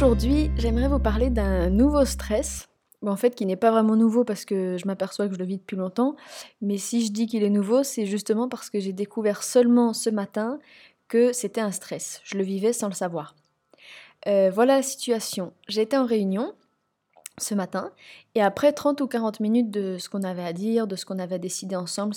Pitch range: 195-240 Hz